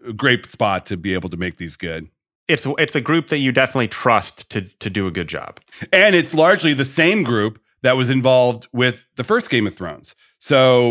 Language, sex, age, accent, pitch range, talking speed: English, male, 40-59, American, 100-130 Hz, 215 wpm